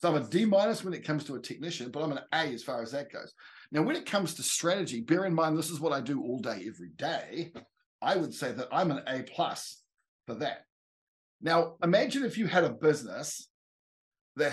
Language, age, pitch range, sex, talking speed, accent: English, 50-69, 135-175 Hz, male, 230 wpm, Australian